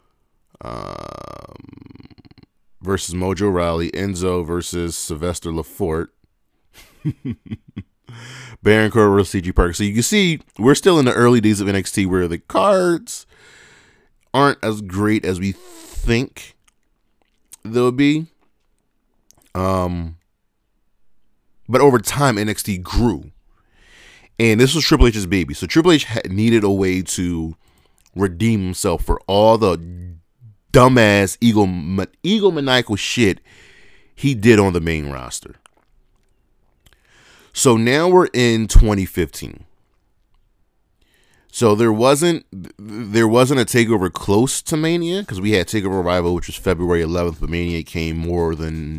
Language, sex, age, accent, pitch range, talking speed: English, male, 30-49, American, 90-120 Hz, 125 wpm